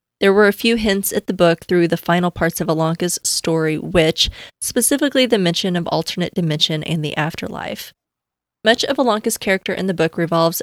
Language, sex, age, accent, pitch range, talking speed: English, female, 20-39, American, 165-205 Hz, 185 wpm